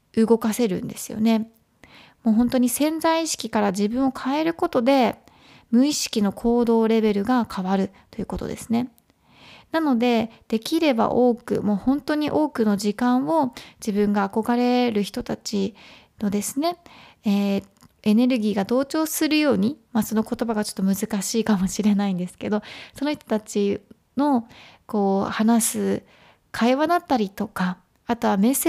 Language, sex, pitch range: Japanese, female, 205-255 Hz